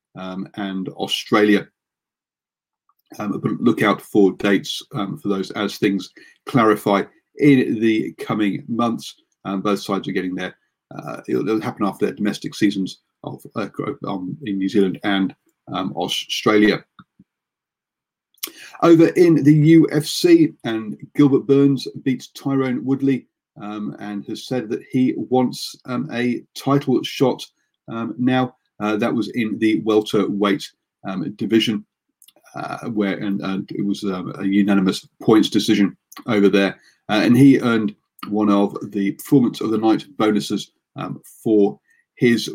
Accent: British